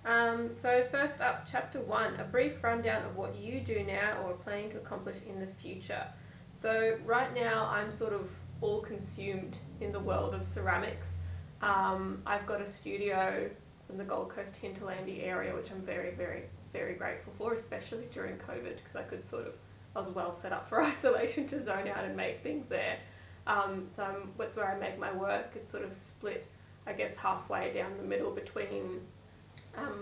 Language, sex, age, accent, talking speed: English, female, 20-39, Australian, 190 wpm